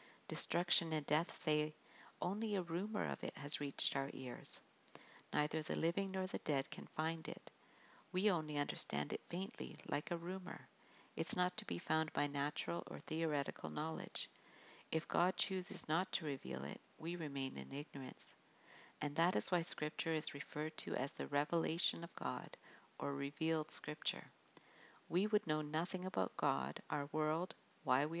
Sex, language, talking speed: female, English, 165 wpm